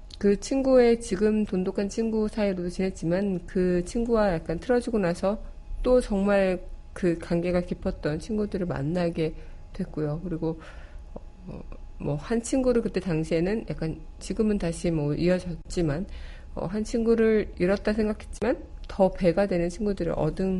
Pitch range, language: 160-205 Hz, Korean